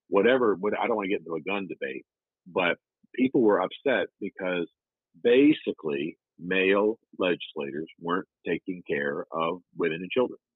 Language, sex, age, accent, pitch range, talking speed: English, male, 50-69, American, 85-115 Hz, 140 wpm